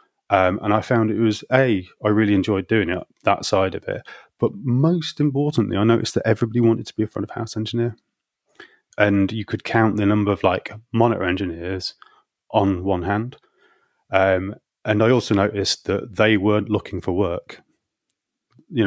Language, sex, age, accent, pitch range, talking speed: English, male, 30-49, British, 95-120 Hz, 180 wpm